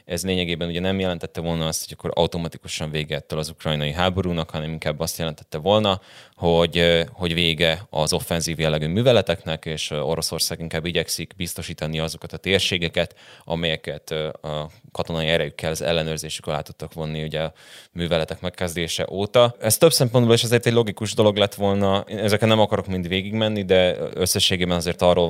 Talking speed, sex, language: 160 wpm, male, Hungarian